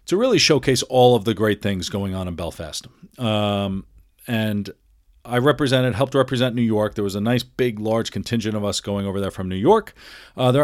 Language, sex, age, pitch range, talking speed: English, male, 40-59, 100-125 Hz, 210 wpm